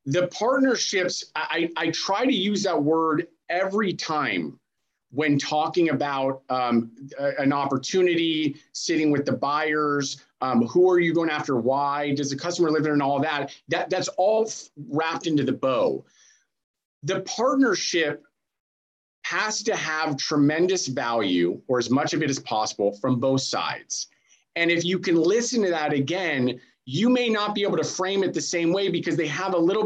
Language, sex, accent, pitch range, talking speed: English, male, American, 135-180 Hz, 170 wpm